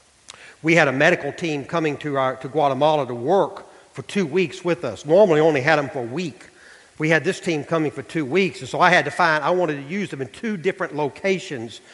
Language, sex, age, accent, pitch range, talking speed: English, male, 40-59, American, 130-165 Hz, 240 wpm